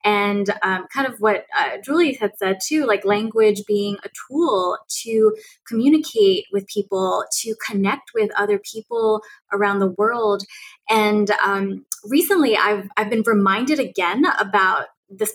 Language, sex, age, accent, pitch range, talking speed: English, female, 20-39, American, 205-260 Hz, 145 wpm